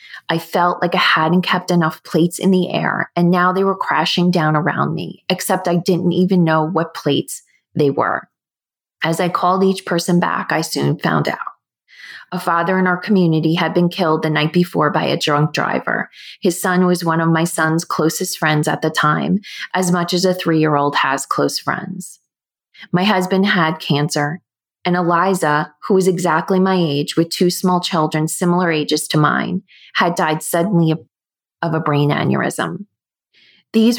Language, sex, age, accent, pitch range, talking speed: English, female, 30-49, American, 155-185 Hz, 180 wpm